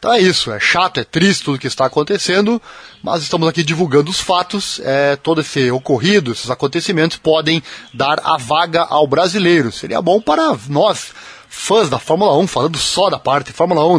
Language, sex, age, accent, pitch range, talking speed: Portuguese, male, 20-39, Brazilian, 140-185 Hz, 185 wpm